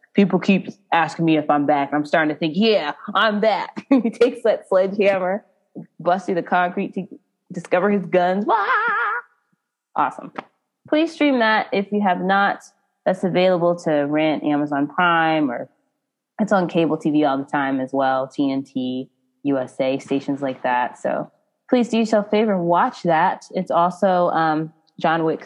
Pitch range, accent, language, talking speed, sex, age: 155-215 Hz, American, English, 165 wpm, female, 20-39